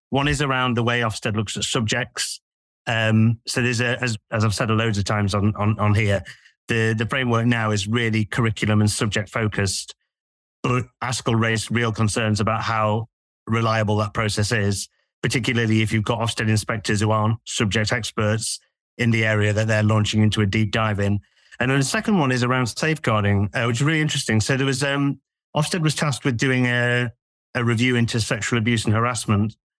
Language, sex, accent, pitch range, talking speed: English, male, British, 110-130 Hz, 195 wpm